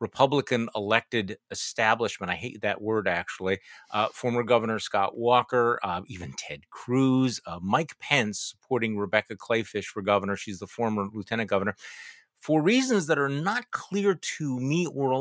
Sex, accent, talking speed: male, American, 160 wpm